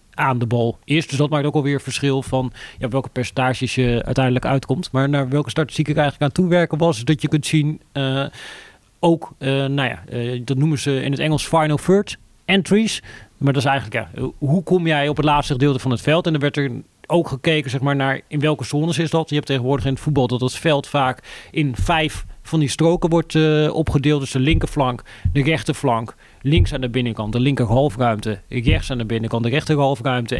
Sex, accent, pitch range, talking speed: male, Dutch, 130-155 Hz, 215 wpm